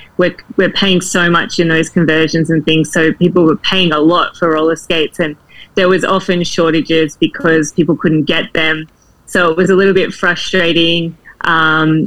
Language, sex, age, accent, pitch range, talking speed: English, female, 20-39, Australian, 160-185 Hz, 185 wpm